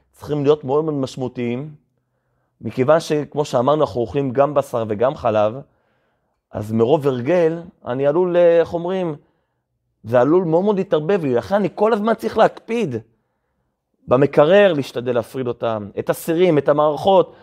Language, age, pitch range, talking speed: Hebrew, 30-49, 120-170 Hz, 140 wpm